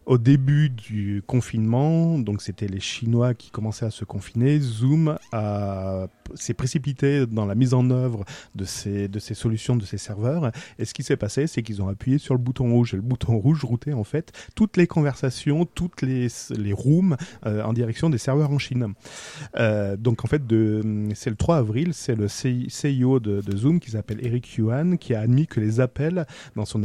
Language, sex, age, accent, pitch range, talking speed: French, male, 40-59, French, 105-135 Hz, 205 wpm